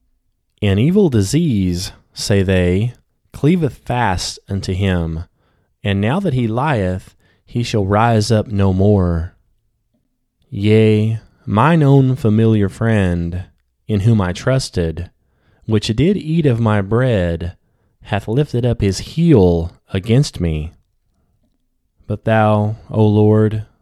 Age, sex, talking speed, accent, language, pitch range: 20-39, male, 115 wpm, American, English, 90-115 Hz